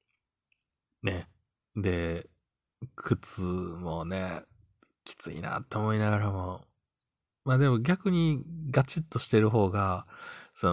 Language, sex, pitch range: Japanese, male, 95-120 Hz